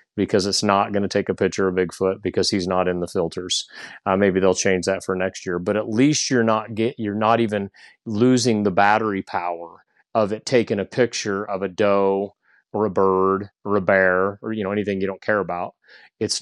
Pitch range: 100-120 Hz